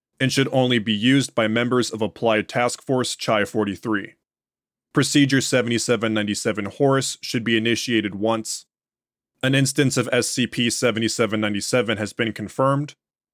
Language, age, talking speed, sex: English, 20-39, 115 wpm, male